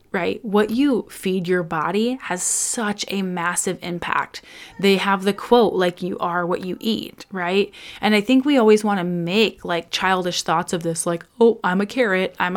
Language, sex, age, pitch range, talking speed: English, female, 20-39, 180-225 Hz, 195 wpm